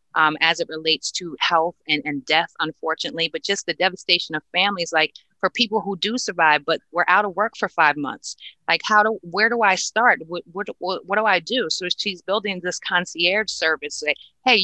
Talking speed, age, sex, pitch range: 210 wpm, 30-49, female, 165-200 Hz